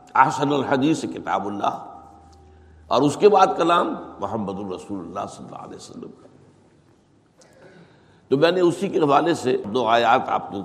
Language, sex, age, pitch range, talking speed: Urdu, male, 60-79, 115-180 Hz, 85 wpm